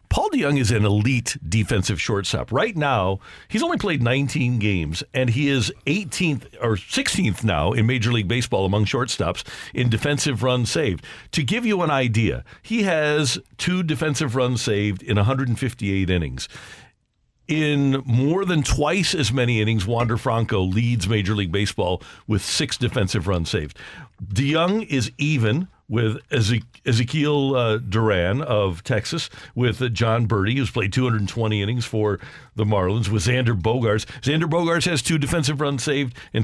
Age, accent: 50-69, American